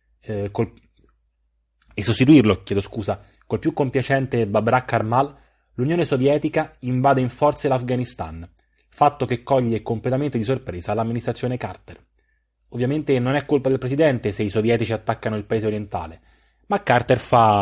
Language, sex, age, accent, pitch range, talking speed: Italian, male, 30-49, native, 110-135 Hz, 140 wpm